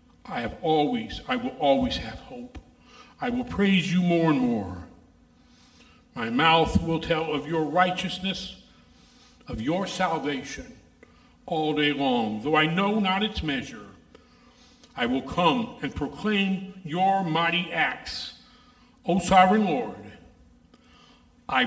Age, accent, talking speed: 50-69, American, 125 wpm